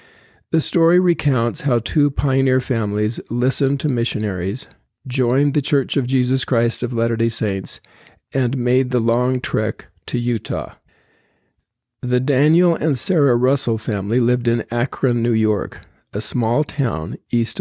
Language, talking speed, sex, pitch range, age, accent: English, 140 wpm, male, 115-140 Hz, 50-69, American